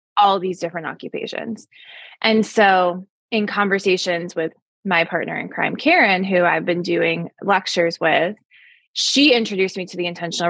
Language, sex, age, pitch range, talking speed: English, female, 20-39, 180-215 Hz, 150 wpm